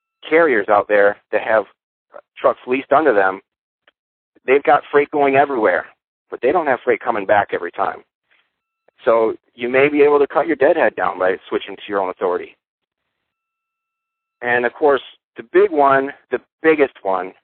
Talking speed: 165 wpm